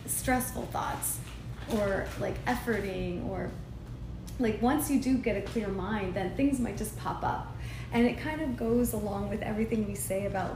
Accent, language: American, English